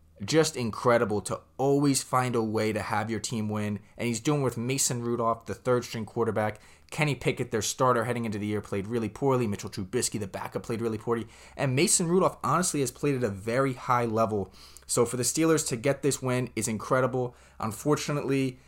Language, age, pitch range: English, 20-39, 110-130 Hz